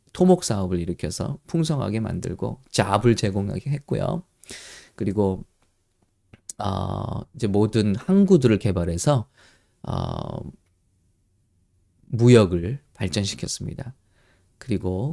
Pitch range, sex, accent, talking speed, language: 100-140 Hz, male, Korean, 70 wpm, English